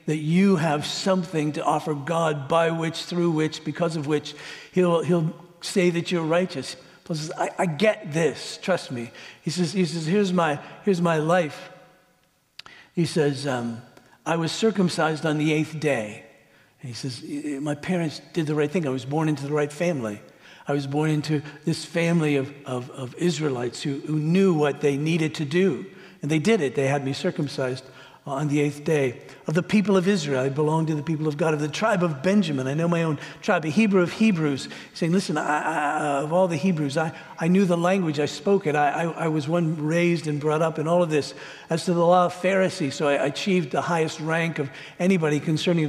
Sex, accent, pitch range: male, American, 150-180 Hz